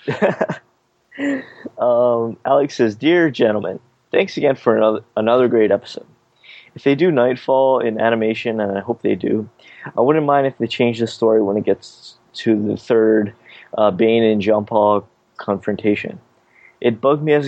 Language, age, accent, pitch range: English, 20-39, American, 105-125 Hz